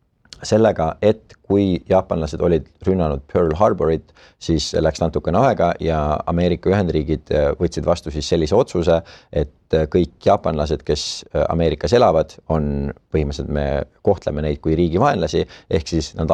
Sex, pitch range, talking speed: male, 75-90 Hz, 135 wpm